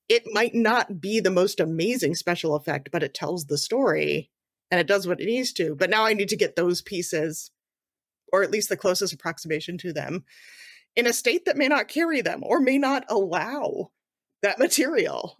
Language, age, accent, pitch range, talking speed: English, 30-49, American, 175-245 Hz, 200 wpm